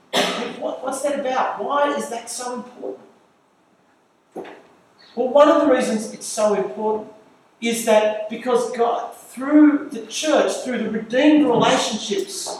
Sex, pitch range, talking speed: male, 200-250 Hz, 130 wpm